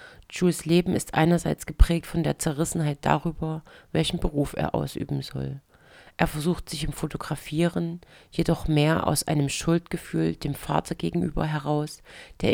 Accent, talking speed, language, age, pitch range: German, 140 wpm, German, 40-59, 145-165 Hz